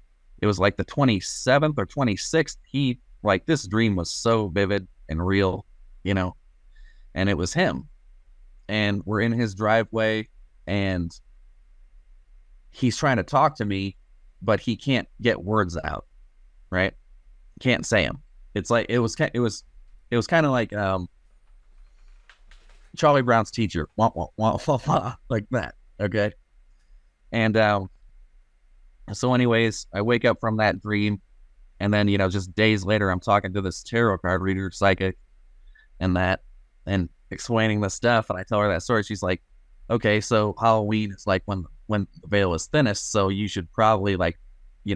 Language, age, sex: English, 30-49, male